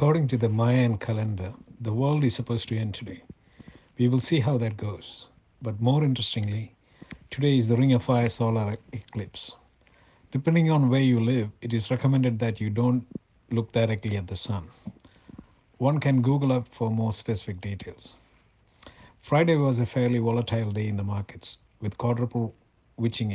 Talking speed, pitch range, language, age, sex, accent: 165 wpm, 110-125 Hz, English, 60-79, male, Indian